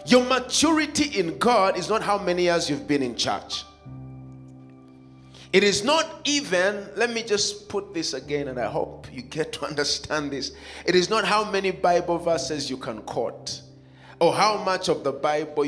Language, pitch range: English, 140-205 Hz